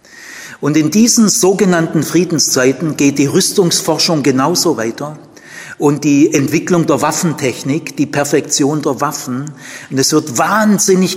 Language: German